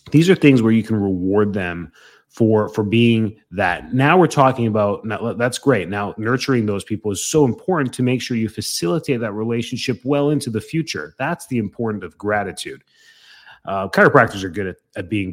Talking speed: 190 wpm